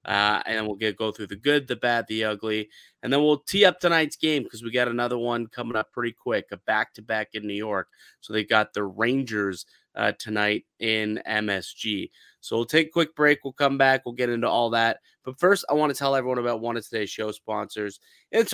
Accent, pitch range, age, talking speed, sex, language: American, 115-150 Hz, 30-49, 225 wpm, male, English